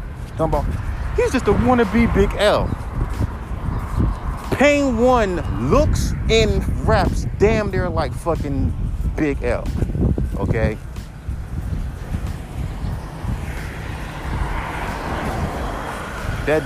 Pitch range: 95-155 Hz